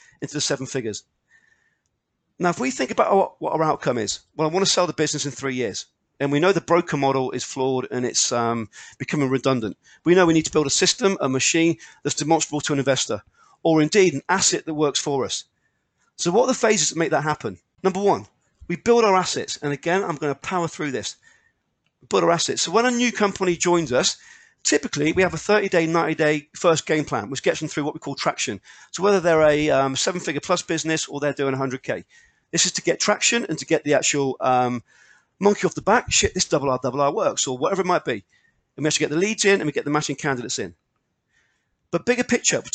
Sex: male